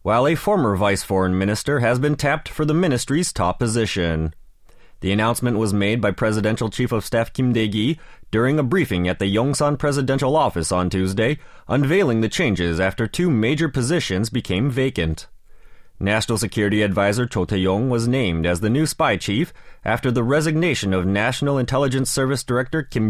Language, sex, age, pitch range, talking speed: English, male, 30-49, 100-140 Hz, 170 wpm